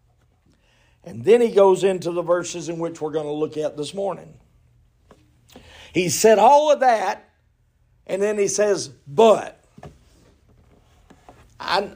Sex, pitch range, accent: male, 170-235 Hz, American